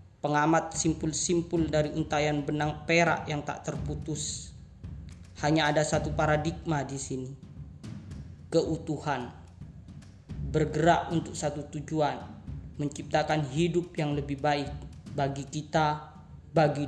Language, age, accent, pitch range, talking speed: Indonesian, 20-39, native, 135-160 Hz, 100 wpm